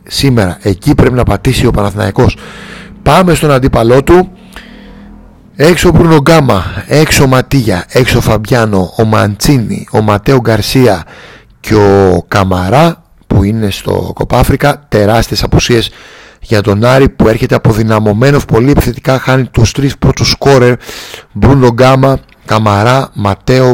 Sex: male